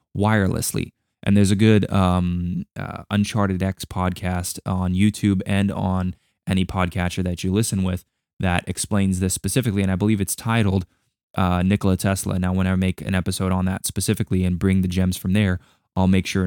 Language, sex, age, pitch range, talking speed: English, male, 20-39, 95-110 Hz, 180 wpm